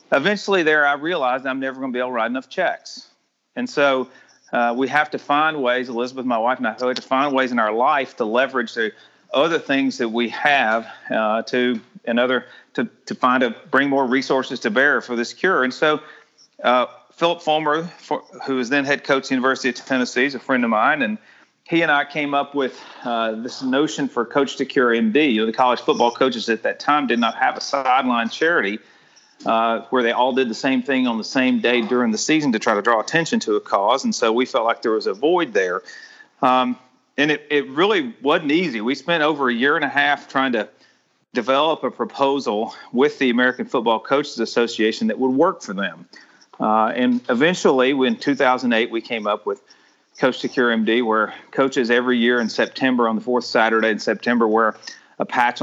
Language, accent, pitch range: English, American, 120-145 Hz